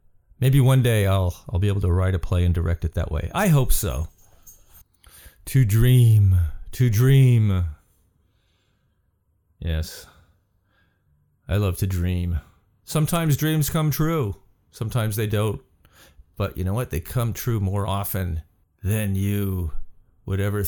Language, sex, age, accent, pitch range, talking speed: English, male, 40-59, American, 95-150 Hz, 140 wpm